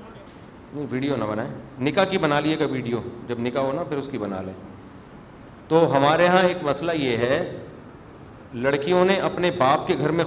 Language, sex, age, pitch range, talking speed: Urdu, male, 40-59, 145-180 Hz, 195 wpm